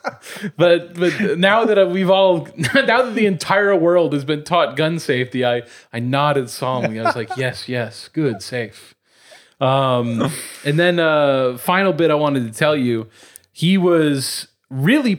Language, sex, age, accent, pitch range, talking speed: English, male, 30-49, American, 120-155 Hz, 160 wpm